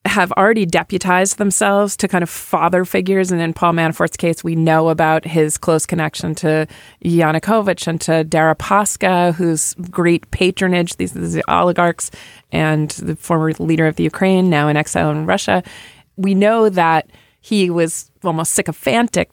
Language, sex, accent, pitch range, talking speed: English, female, American, 160-185 Hz, 155 wpm